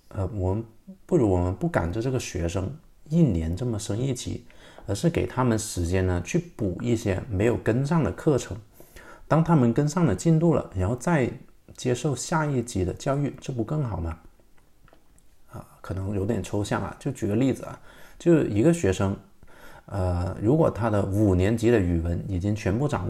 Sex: male